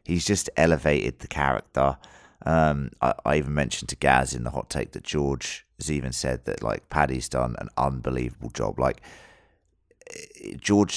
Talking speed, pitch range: 165 wpm, 65-80 Hz